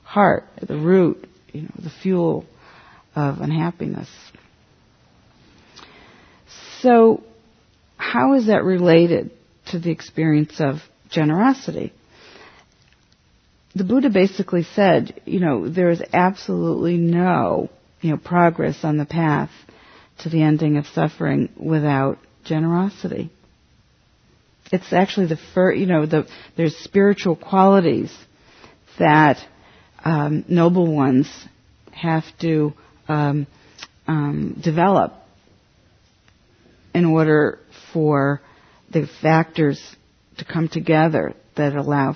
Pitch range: 145-180 Hz